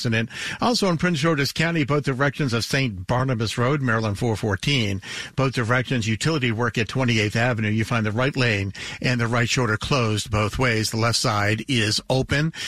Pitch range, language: 115-140 Hz, English